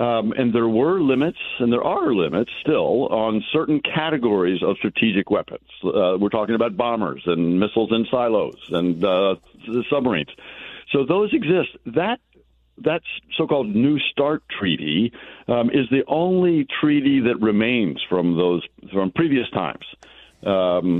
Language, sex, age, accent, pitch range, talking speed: English, male, 60-79, American, 105-145 Hz, 145 wpm